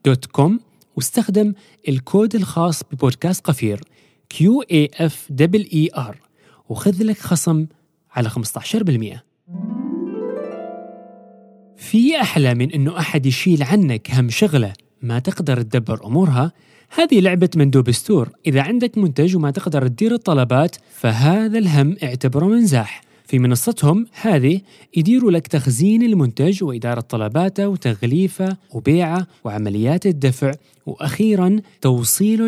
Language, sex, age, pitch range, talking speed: Arabic, male, 30-49, 130-205 Hz, 100 wpm